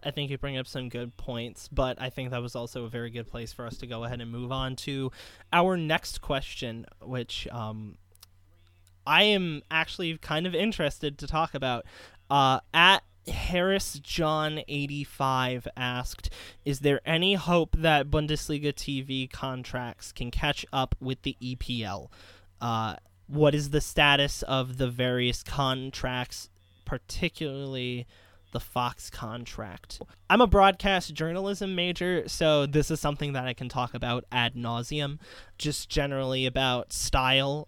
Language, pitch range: English, 120-155 Hz